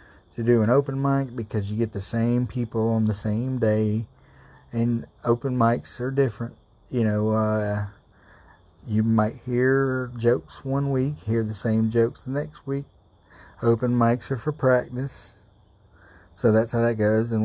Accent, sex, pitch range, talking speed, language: American, male, 100-115 Hz, 160 wpm, English